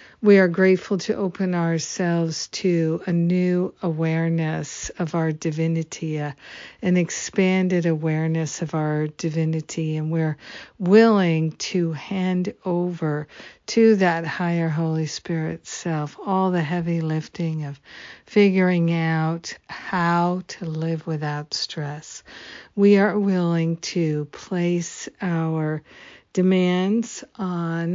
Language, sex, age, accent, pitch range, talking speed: English, female, 50-69, American, 160-190 Hz, 110 wpm